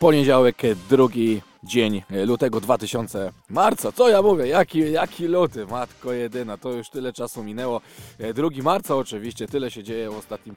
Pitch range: 110-135 Hz